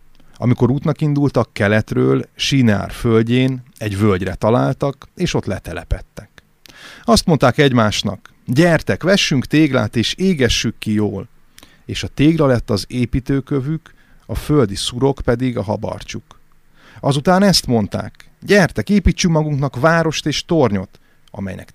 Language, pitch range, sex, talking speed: Hungarian, 105-135 Hz, male, 120 wpm